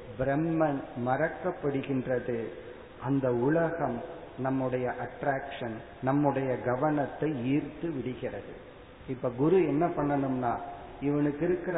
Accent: native